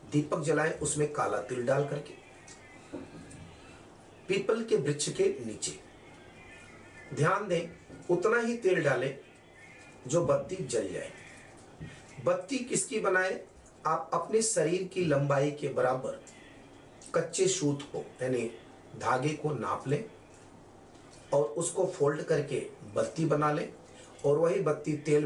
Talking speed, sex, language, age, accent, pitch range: 120 wpm, male, Hindi, 40-59, native, 145-200 Hz